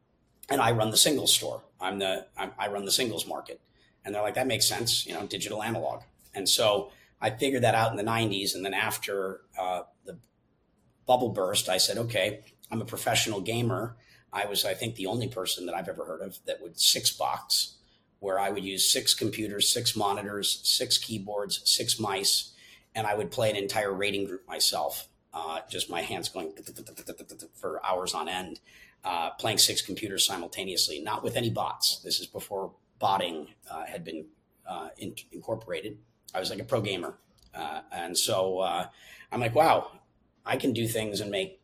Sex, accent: male, American